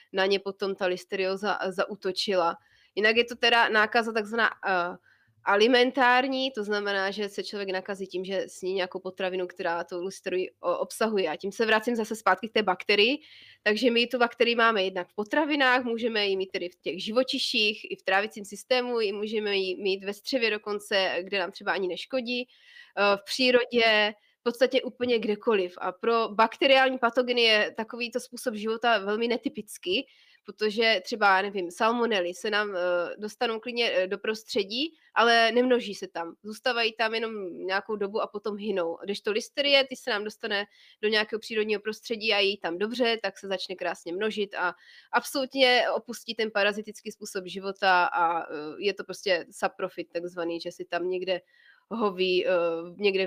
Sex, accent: female, native